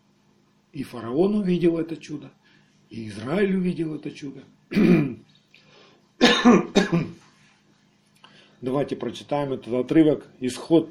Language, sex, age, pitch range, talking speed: Russian, male, 50-69, 135-200 Hz, 85 wpm